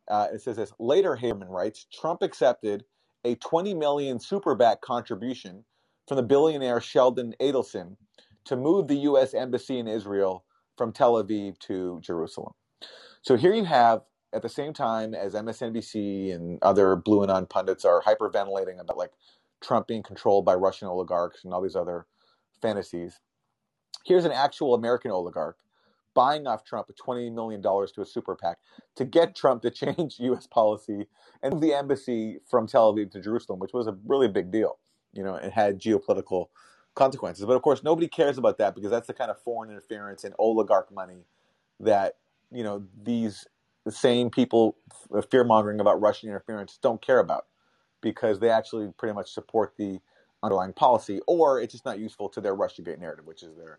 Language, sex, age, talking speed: English, male, 30-49, 175 wpm